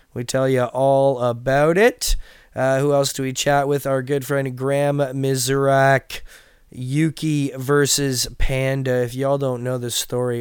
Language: English